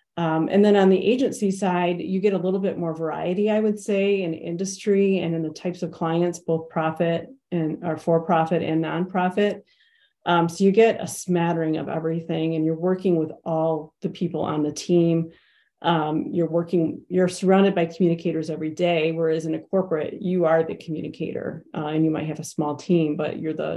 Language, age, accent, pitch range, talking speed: English, 40-59, American, 160-185 Hz, 190 wpm